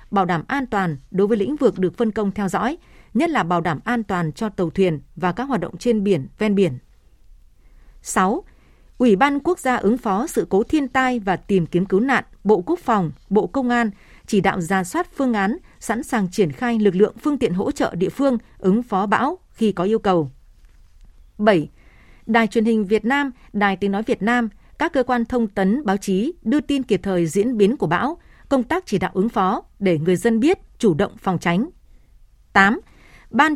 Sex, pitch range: female, 190-250 Hz